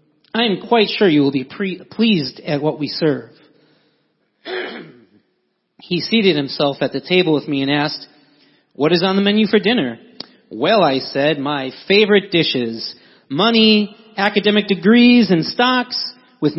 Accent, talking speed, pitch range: American, 150 wpm, 145-220 Hz